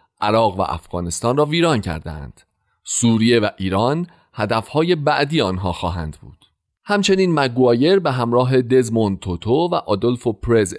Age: 40-59